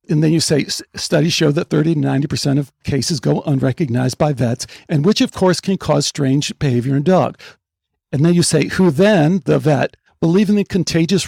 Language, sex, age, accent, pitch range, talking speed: English, male, 60-79, American, 140-195 Hz, 195 wpm